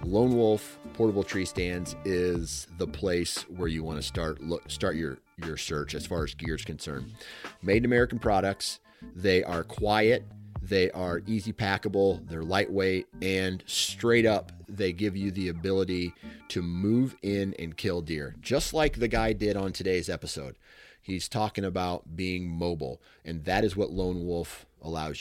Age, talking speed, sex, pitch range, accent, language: 30-49, 170 wpm, male, 85-110 Hz, American, English